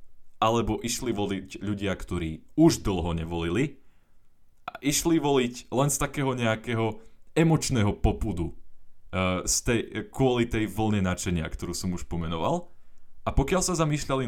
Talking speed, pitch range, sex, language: 140 wpm, 90-125 Hz, male, Slovak